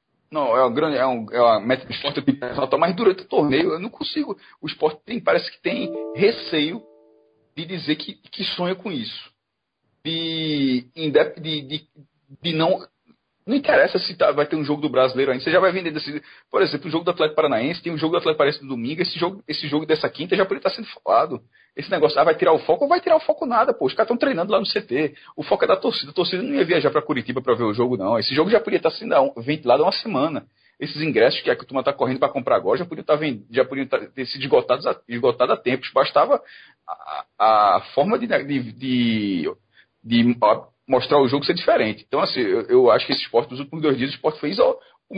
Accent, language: Brazilian, Portuguese